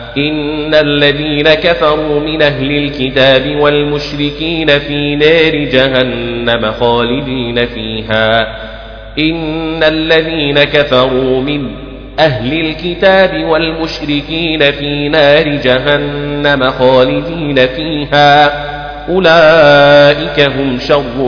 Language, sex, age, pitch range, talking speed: Arabic, male, 30-49, 120-145 Hz, 75 wpm